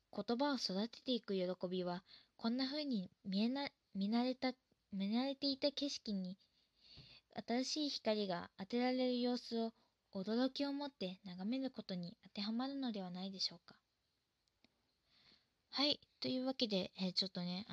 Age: 20-39